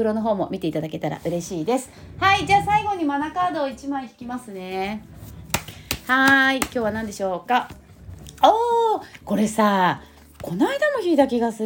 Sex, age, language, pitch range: female, 30-49, Japanese, 190-295 Hz